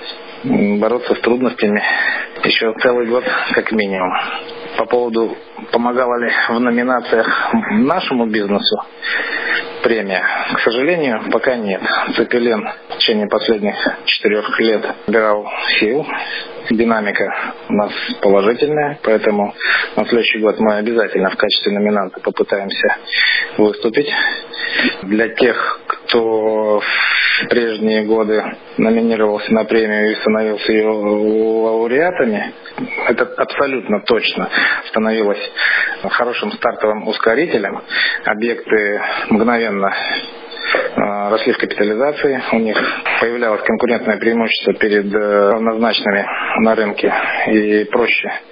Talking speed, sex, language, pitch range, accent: 100 wpm, male, Russian, 105-120 Hz, native